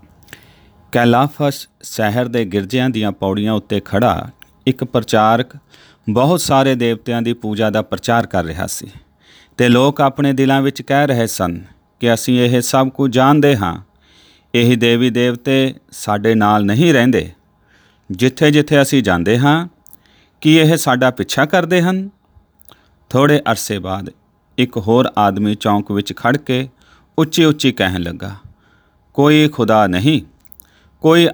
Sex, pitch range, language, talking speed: male, 105-135 Hz, Punjabi, 120 wpm